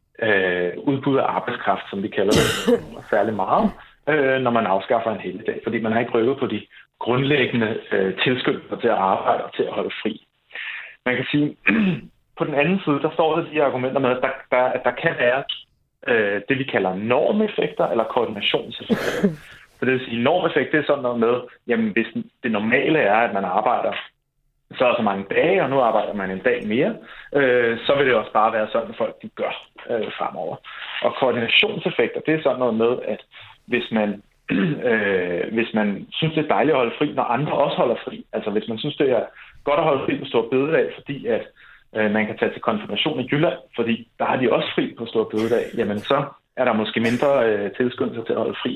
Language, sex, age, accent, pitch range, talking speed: Danish, male, 30-49, native, 115-145 Hz, 195 wpm